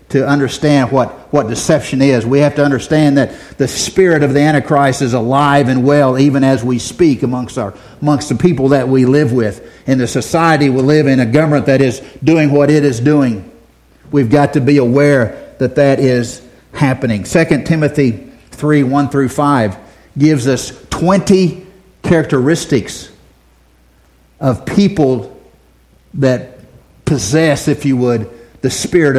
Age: 50-69